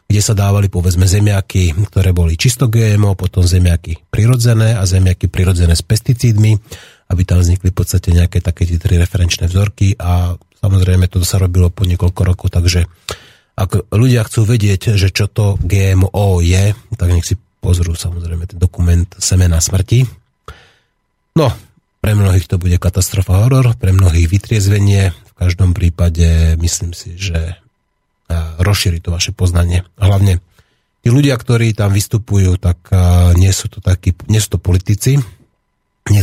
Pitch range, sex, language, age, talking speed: 90-105 Hz, male, Slovak, 30-49, 150 wpm